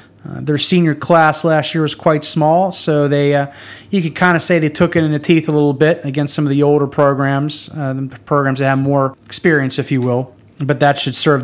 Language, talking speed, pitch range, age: English, 235 wpm, 130-155 Hz, 30-49